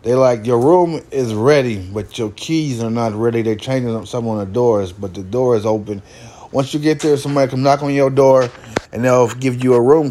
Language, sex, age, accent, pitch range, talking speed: English, male, 20-39, American, 120-150 Hz, 230 wpm